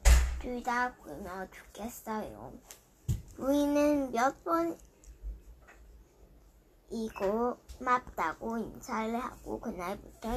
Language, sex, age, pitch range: Korean, male, 10-29, 195-305 Hz